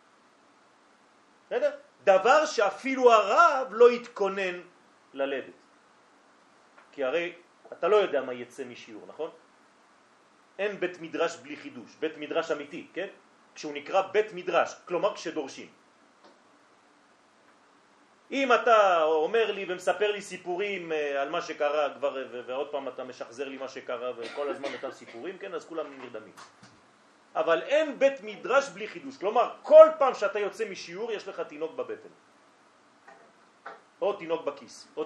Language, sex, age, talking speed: French, male, 40-59, 130 wpm